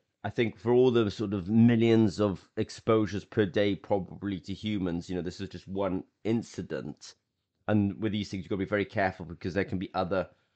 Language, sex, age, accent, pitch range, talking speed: English, male, 30-49, British, 95-110 Hz, 210 wpm